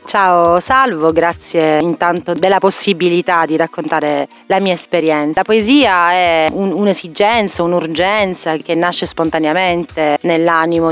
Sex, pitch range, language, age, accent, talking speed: female, 155-185 Hz, Italian, 30-49, native, 110 wpm